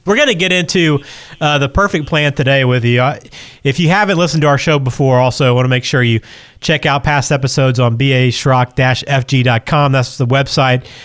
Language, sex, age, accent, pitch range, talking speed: English, male, 30-49, American, 125-145 Hz, 200 wpm